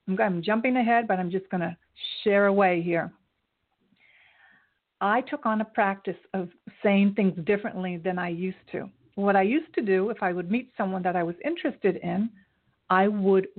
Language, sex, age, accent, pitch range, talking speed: English, female, 50-69, American, 185-230 Hz, 180 wpm